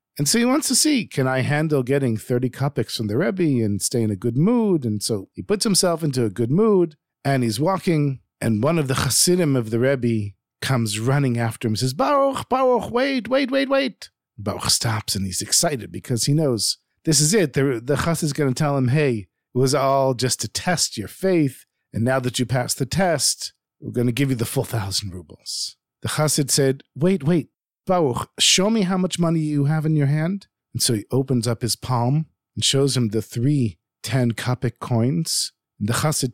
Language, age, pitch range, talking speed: English, 50-69, 120-170 Hz, 215 wpm